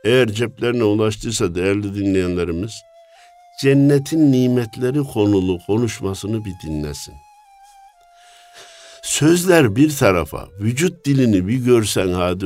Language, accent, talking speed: Turkish, native, 90 wpm